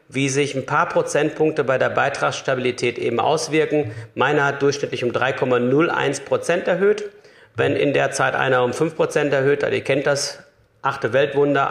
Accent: German